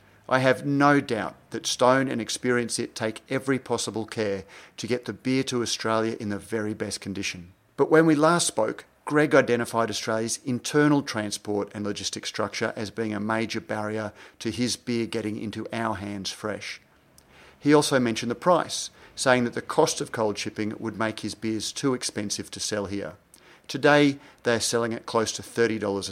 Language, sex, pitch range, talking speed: English, male, 105-130 Hz, 180 wpm